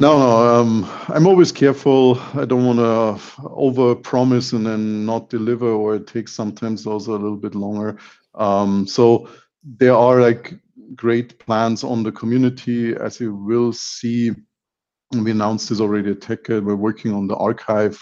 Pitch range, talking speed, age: 105-115 Hz, 165 wpm, 50-69